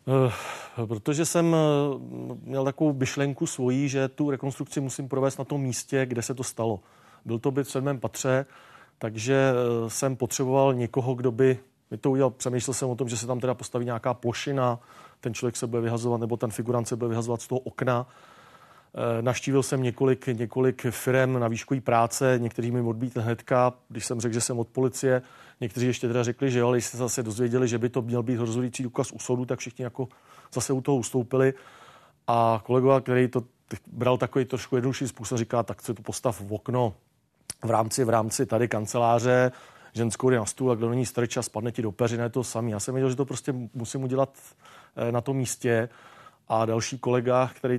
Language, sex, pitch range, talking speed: Czech, male, 120-130 Hz, 195 wpm